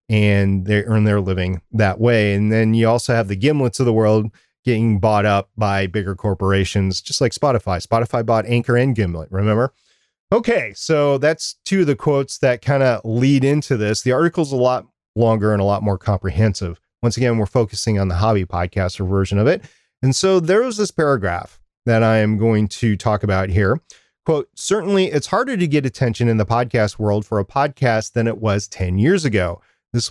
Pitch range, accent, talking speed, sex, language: 105-135 Hz, American, 200 wpm, male, English